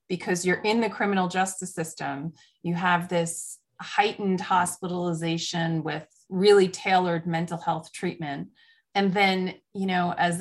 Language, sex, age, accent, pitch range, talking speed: English, female, 30-49, American, 170-205 Hz, 135 wpm